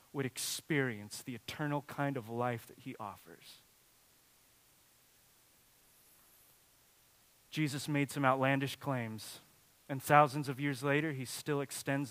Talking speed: 115 wpm